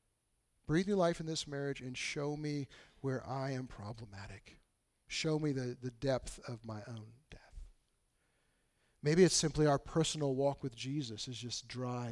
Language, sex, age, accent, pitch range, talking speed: English, male, 50-69, American, 125-155 Hz, 165 wpm